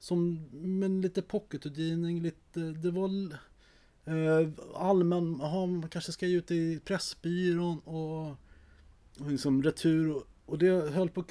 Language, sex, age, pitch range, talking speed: Swedish, male, 30-49, 120-165 Hz, 150 wpm